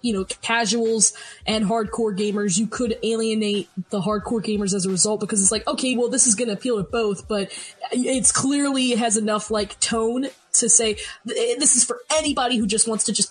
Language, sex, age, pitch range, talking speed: English, female, 20-39, 220-270 Hz, 205 wpm